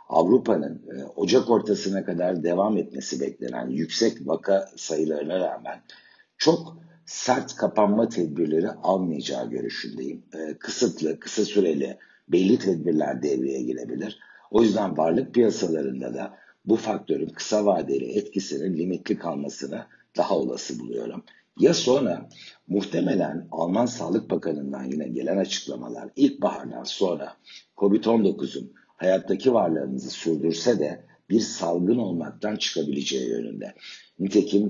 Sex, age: male, 60-79